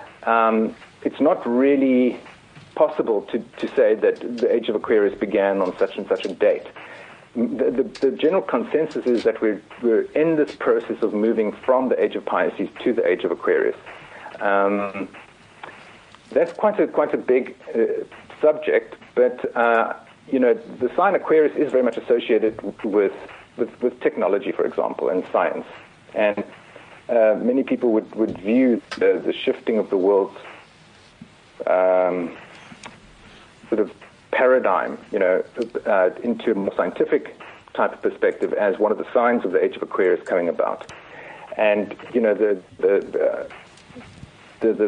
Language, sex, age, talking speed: English, male, 50-69, 160 wpm